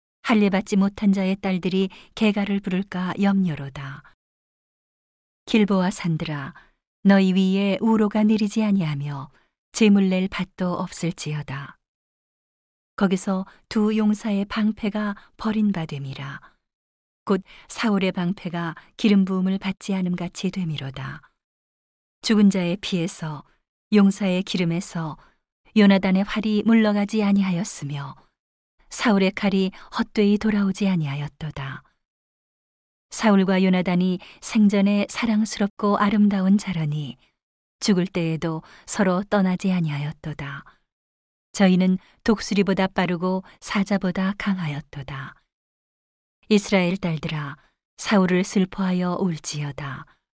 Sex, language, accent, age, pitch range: female, Korean, native, 40-59, 165-205 Hz